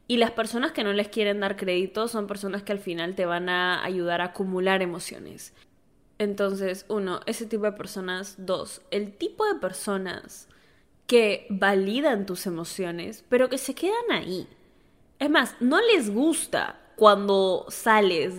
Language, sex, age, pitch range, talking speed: Spanish, female, 10-29, 185-290 Hz, 155 wpm